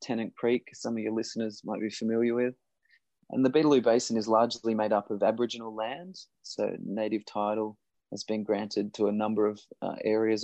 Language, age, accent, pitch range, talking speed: English, 20-39, Australian, 110-120 Hz, 190 wpm